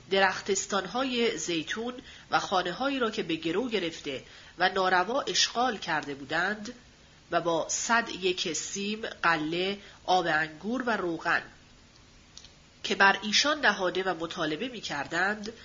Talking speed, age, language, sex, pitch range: 125 wpm, 40-59, Persian, female, 165-225 Hz